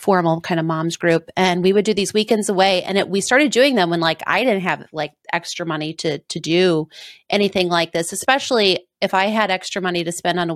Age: 30-49